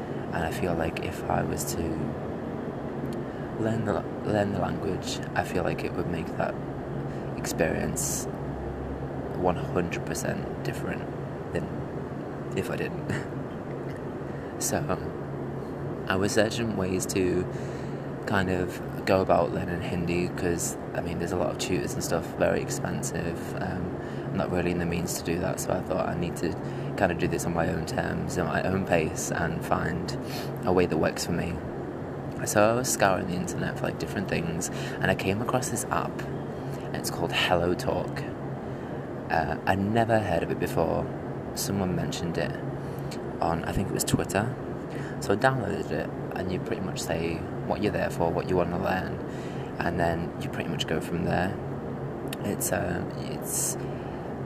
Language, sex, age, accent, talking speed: English, male, 20-39, British, 170 wpm